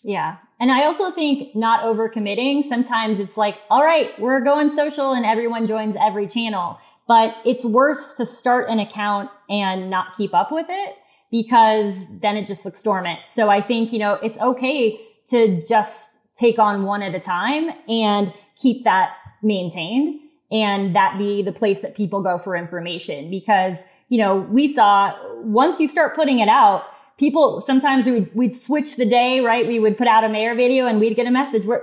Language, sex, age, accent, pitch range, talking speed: English, female, 20-39, American, 205-250 Hz, 190 wpm